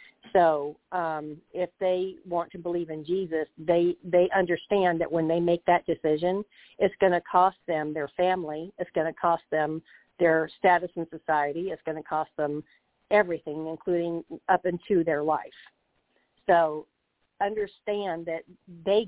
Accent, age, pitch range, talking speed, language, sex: American, 50-69, 160-185 Hz, 155 wpm, English, female